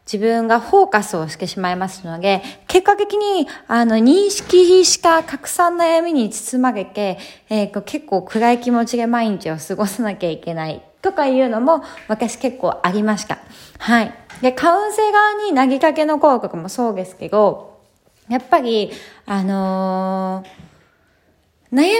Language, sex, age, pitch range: Japanese, female, 20-39, 190-290 Hz